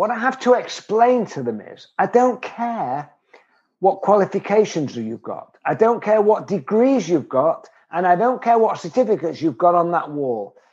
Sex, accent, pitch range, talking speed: male, British, 150-230 Hz, 185 wpm